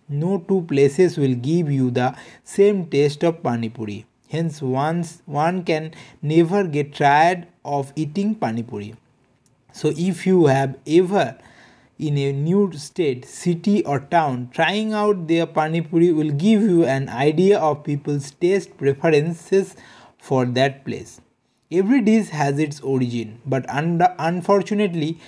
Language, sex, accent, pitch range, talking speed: English, male, Indian, 135-180 Hz, 130 wpm